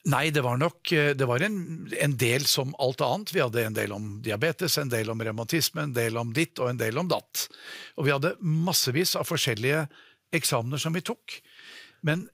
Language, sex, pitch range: English, male, 125-160 Hz